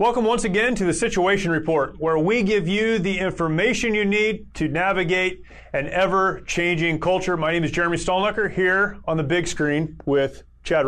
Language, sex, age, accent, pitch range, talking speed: English, male, 30-49, American, 155-185 Hz, 175 wpm